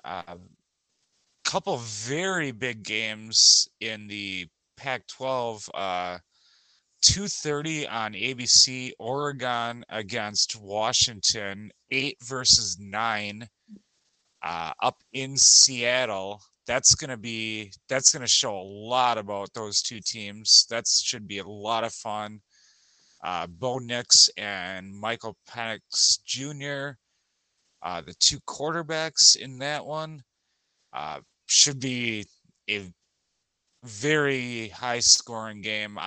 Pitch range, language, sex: 105-130 Hz, English, male